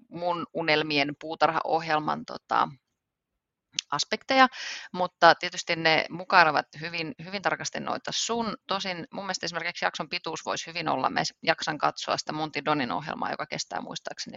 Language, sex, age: Finnish, female, 30-49